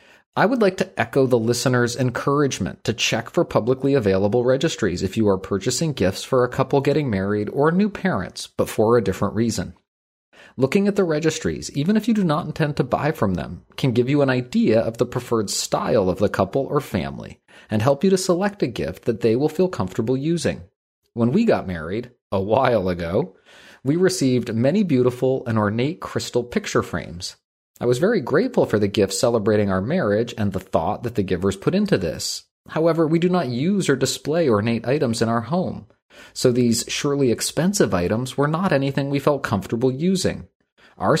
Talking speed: 195 wpm